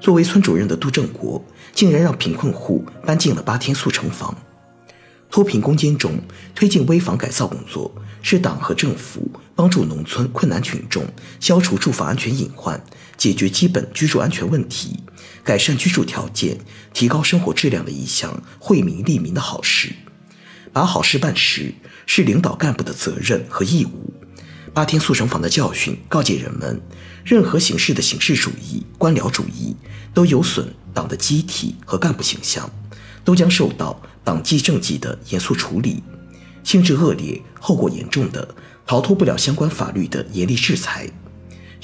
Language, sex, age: Chinese, male, 50-69